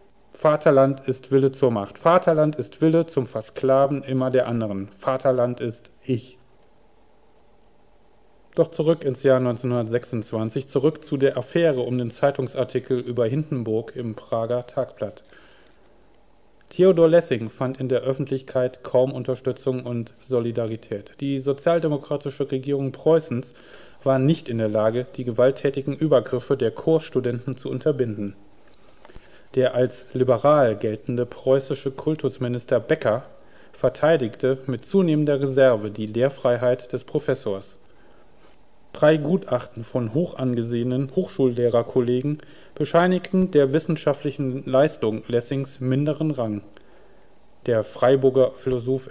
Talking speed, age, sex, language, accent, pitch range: 110 wpm, 40-59, male, German, German, 120-145 Hz